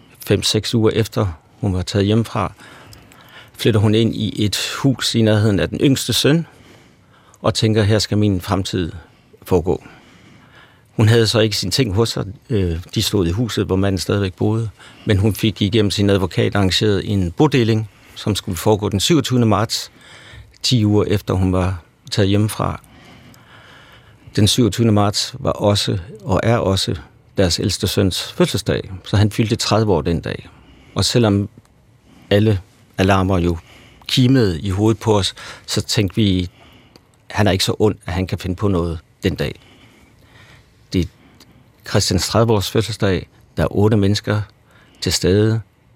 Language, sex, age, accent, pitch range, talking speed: Danish, male, 60-79, native, 95-115 Hz, 155 wpm